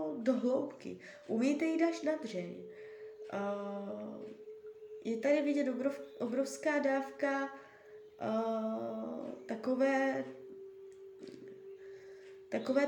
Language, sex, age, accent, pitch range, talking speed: Czech, female, 20-39, native, 220-330 Hz, 70 wpm